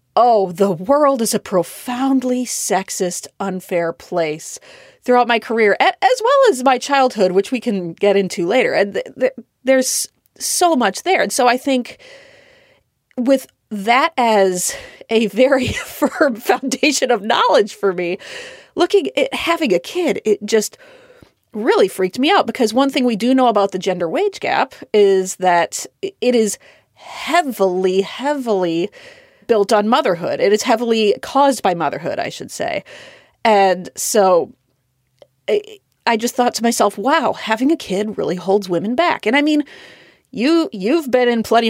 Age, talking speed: 30-49, 155 wpm